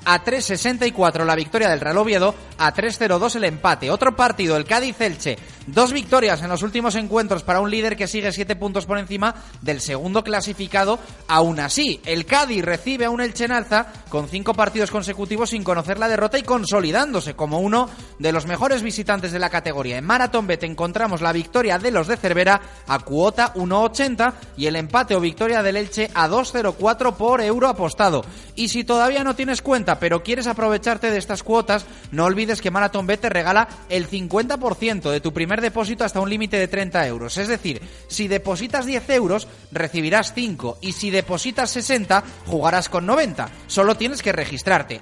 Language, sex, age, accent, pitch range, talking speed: Spanish, male, 30-49, Spanish, 175-235 Hz, 185 wpm